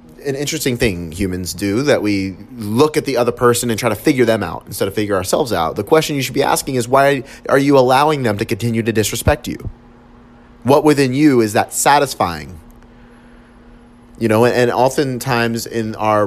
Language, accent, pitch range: English, American, 100-120 Hz